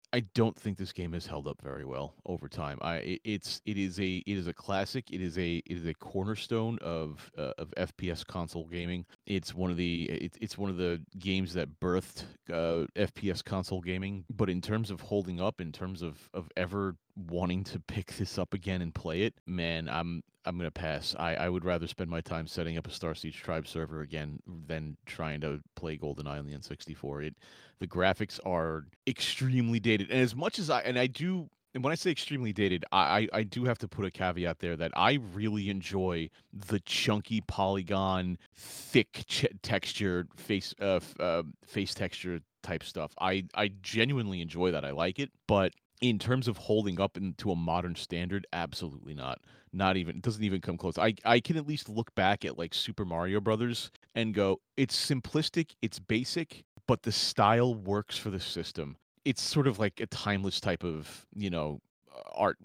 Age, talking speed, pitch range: 30-49, 200 wpm, 85-110 Hz